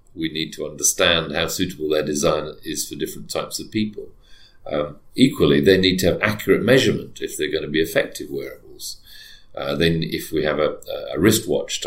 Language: English